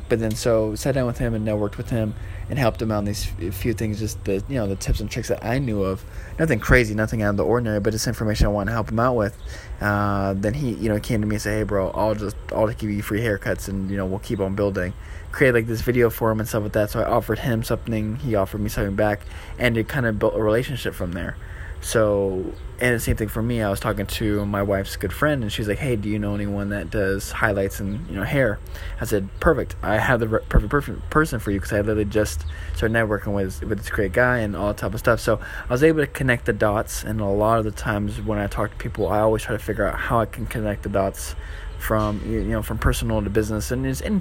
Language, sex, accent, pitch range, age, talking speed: English, male, American, 95-115 Hz, 20-39, 280 wpm